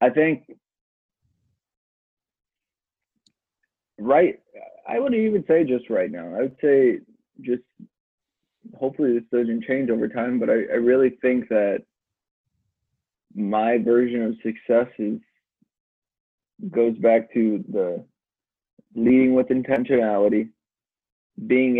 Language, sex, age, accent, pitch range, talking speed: English, male, 20-39, American, 110-130 Hz, 105 wpm